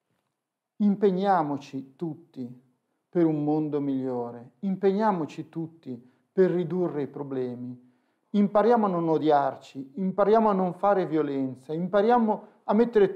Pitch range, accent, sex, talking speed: 145-205 Hz, native, male, 110 wpm